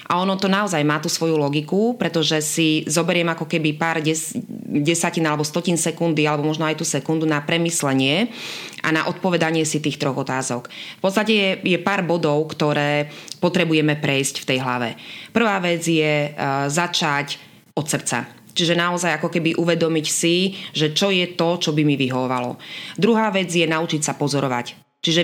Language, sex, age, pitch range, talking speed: Slovak, female, 20-39, 150-180 Hz, 170 wpm